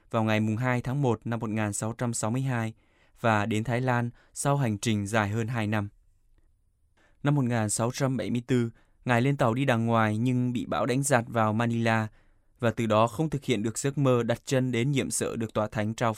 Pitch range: 110-130 Hz